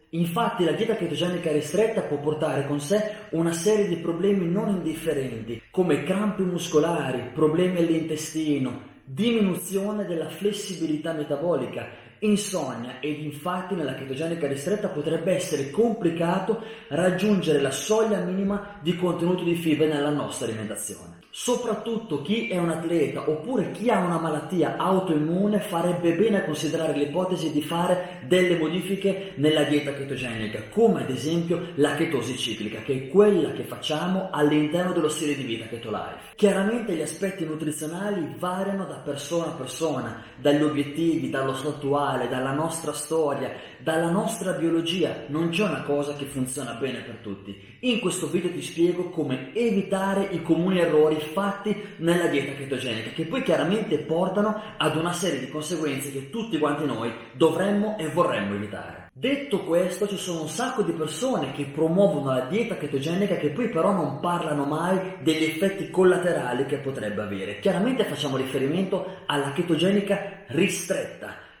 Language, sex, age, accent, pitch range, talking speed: Italian, male, 30-49, native, 145-190 Hz, 145 wpm